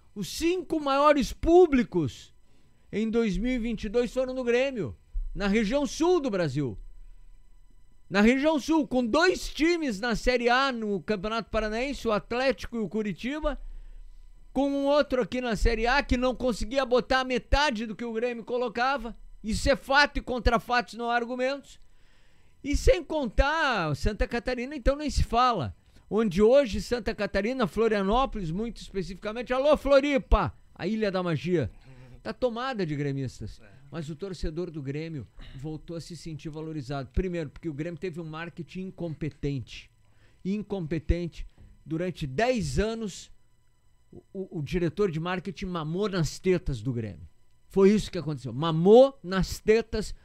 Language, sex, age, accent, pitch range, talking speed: Portuguese, male, 50-69, Brazilian, 165-250 Hz, 145 wpm